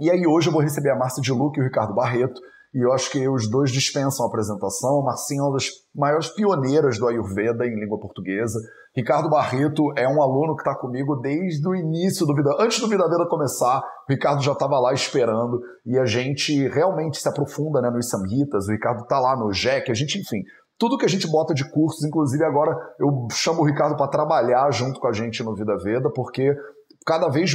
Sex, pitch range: male, 130-165 Hz